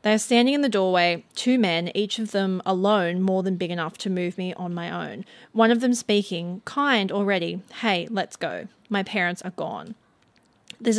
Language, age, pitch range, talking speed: English, 20-39, 180-220 Hz, 195 wpm